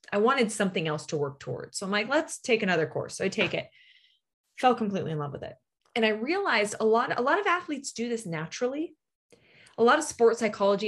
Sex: female